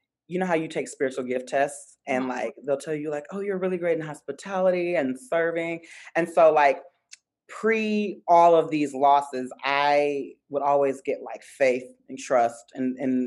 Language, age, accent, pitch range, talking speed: English, 30-49, American, 135-180 Hz, 180 wpm